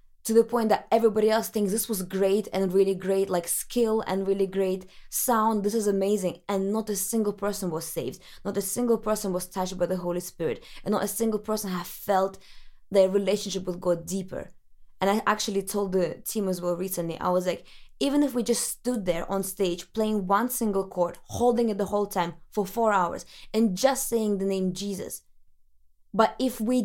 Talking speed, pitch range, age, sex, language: 205 wpm, 180-215 Hz, 20-39, female, English